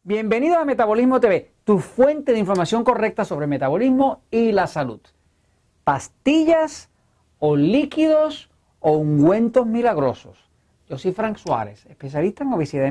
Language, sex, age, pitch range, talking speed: Spanish, male, 40-59, 130-195 Hz, 130 wpm